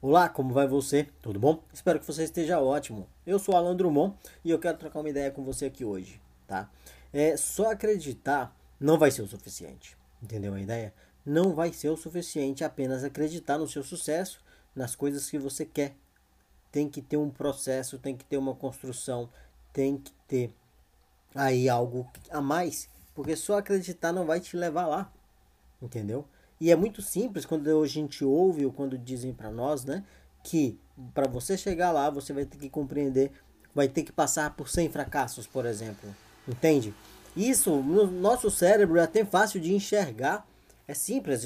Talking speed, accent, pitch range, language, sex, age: 175 wpm, Brazilian, 125-160 Hz, Portuguese, male, 20-39